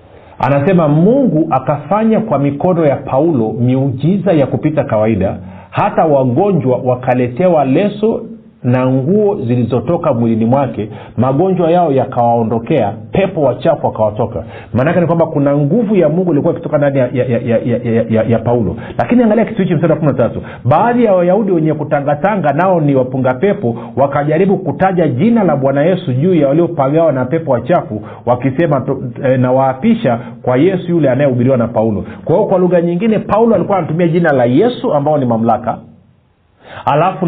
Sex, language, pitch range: male, Swahili, 125-180 Hz